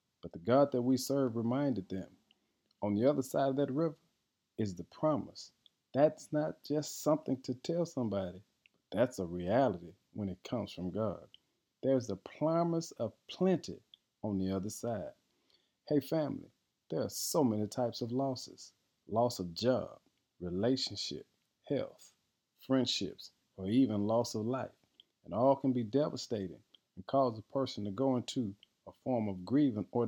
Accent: American